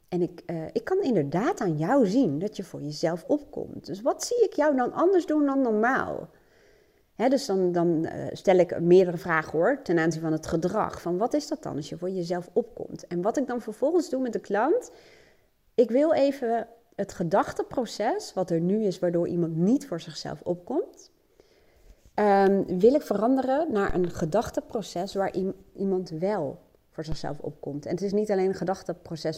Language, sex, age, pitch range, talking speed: Dutch, female, 40-59, 175-245 Hz, 185 wpm